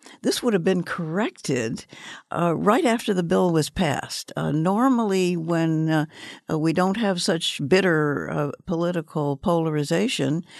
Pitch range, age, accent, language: 145-185 Hz, 60-79, American, English